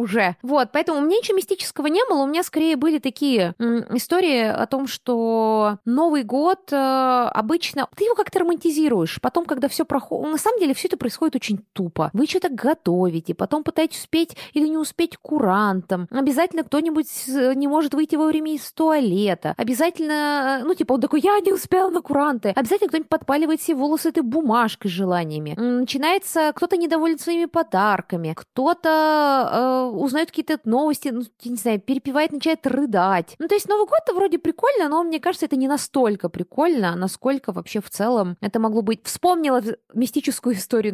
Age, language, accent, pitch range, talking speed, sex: 20-39, Russian, native, 210-315 Hz, 175 wpm, female